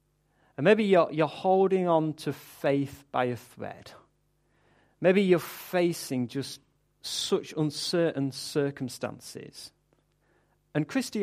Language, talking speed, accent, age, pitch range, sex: English, 105 wpm, British, 40-59, 120-165 Hz, male